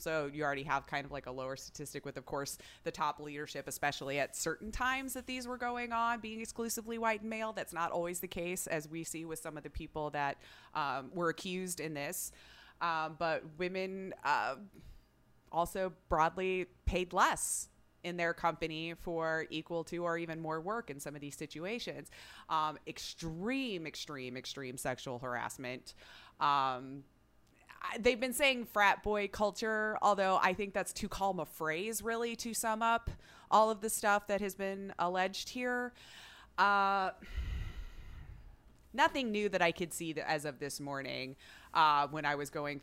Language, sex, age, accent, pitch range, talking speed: English, female, 20-39, American, 145-195 Hz, 170 wpm